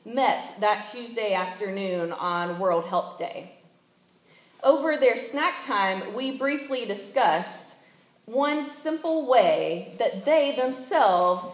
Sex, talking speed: female, 110 wpm